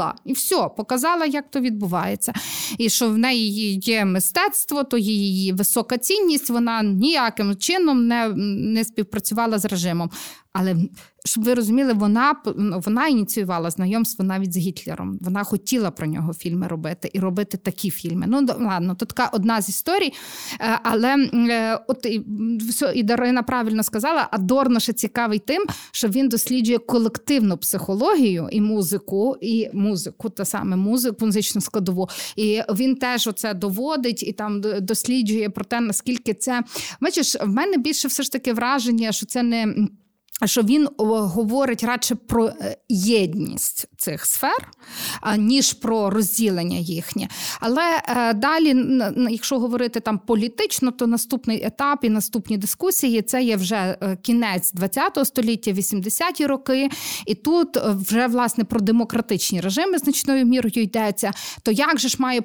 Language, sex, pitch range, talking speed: Ukrainian, female, 205-250 Hz, 145 wpm